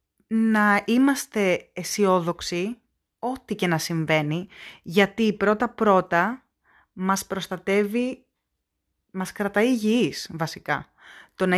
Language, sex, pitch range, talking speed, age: Greek, female, 180-225 Hz, 90 wpm, 20-39